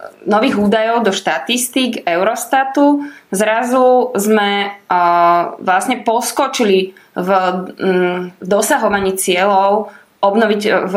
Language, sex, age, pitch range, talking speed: Slovak, female, 20-39, 195-240 Hz, 80 wpm